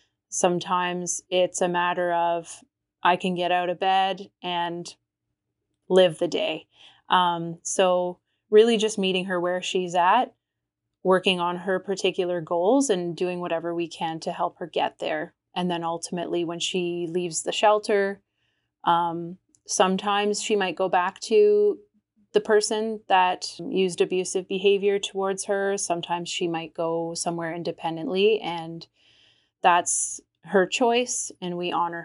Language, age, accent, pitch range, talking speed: English, 20-39, American, 175-200 Hz, 140 wpm